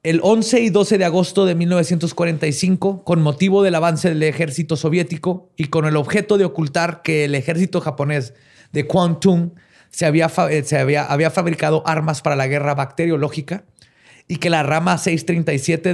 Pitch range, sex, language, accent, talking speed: 145-180 Hz, male, Spanish, Mexican, 165 wpm